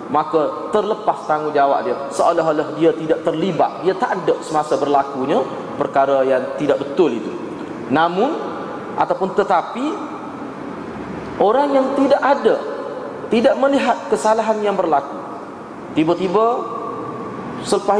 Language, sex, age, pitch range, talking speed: Malay, male, 30-49, 155-225 Hz, 105 wpm